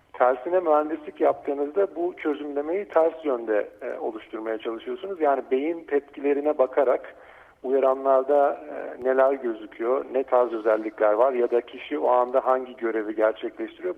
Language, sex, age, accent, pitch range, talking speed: Turkish, male, 50-69, native, 125-150 Hz, 130 wpm